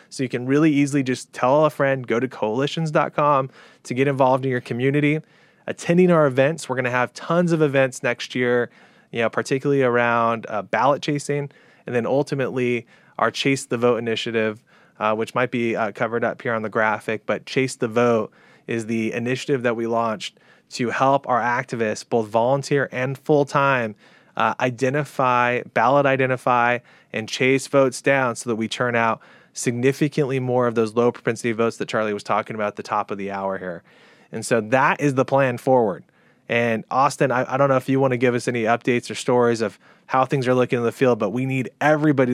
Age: 20-39